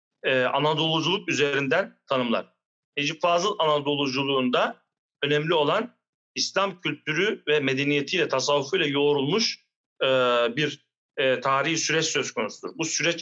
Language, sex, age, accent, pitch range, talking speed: Turkish, male, 40-59, native, 140-175 Hz, 95 wpm